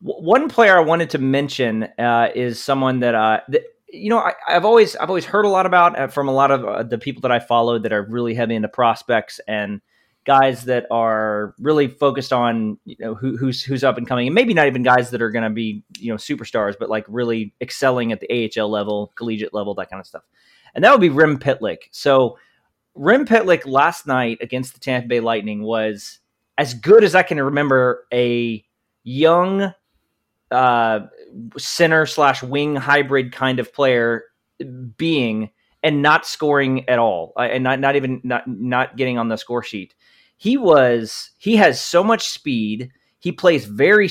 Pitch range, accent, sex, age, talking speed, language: 115-145 Hz, American, male, 30-49, 190 wpm, English